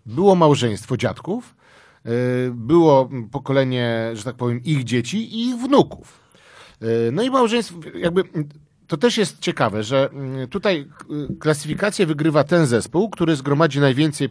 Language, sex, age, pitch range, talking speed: Polish, male, 40-59, 120-165 Hz, 125 wpm